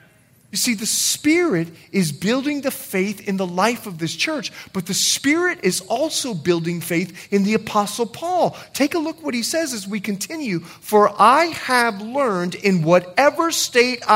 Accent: American